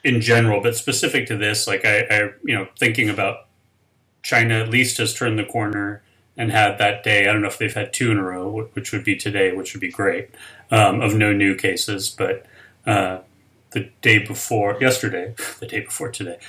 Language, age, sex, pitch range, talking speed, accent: English, 30-49, male, 100-115 Hz, 210 wpm, American